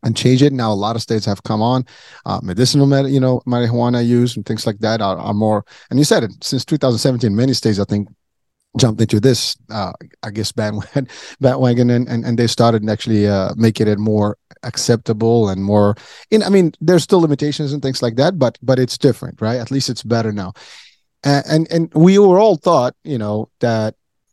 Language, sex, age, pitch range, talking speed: English, male, 30-49, 105-125 Hz, 210 wpm